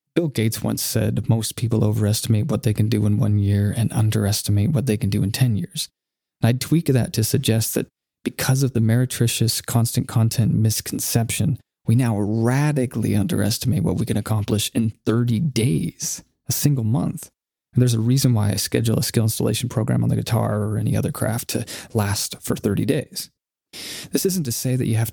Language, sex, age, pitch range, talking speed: English, male, 30-49, 110-130 Hz, 190 wpm